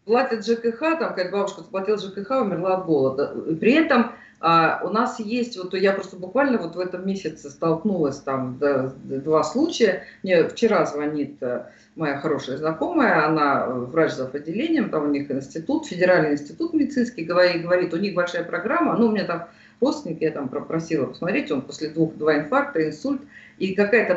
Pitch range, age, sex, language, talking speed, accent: 155-225 Hz, 50-69, female, Russian, 170 wpm, native